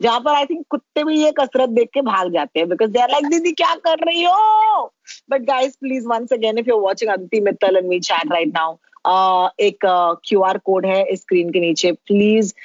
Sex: female